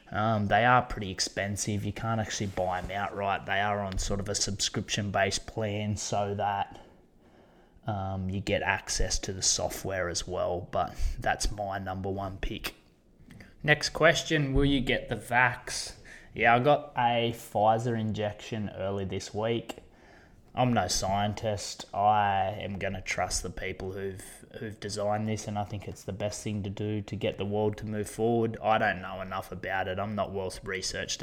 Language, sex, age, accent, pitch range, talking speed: English, male, 20-39, Australian, 100-115 Hz, 180 wpm